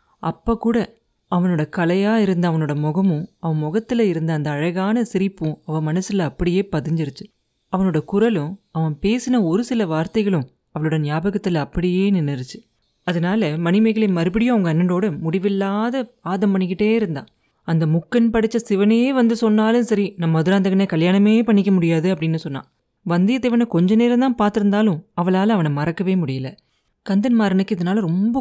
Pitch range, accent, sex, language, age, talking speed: 160-215 Hz, native, female, Tamil, 30-49, 135 wpm